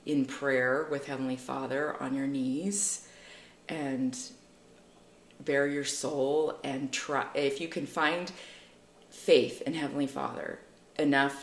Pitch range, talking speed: 140-180 Hz, 120 wpm